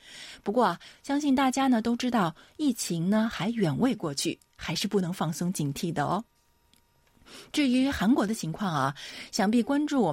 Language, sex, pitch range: Chinese, female, 160-230 Hz